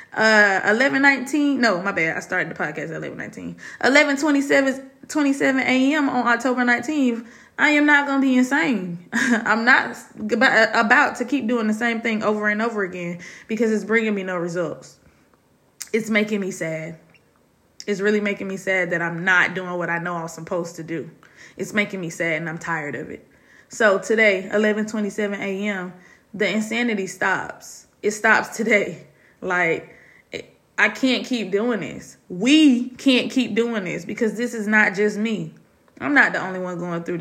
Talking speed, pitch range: 175 wpm, 195-245 Hz